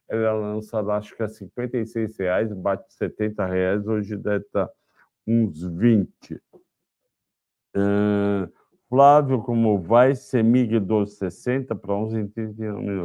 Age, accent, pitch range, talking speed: 50-69, Brazilian, 100-125 Hz, 115 wpm